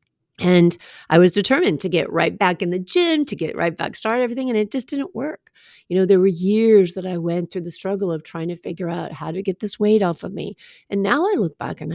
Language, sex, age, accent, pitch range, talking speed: English, female, 40-59, American, 170-210 Hz, 260 wpm